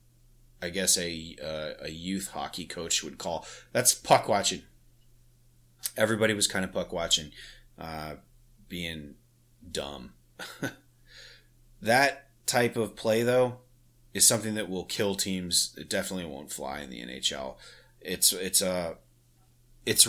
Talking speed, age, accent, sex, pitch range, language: 135 wpm, 30-49, American, male, 85-120 Hz, English